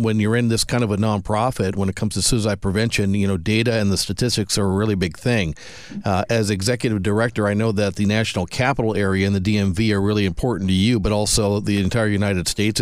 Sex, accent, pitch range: male, American, 105-120 Hz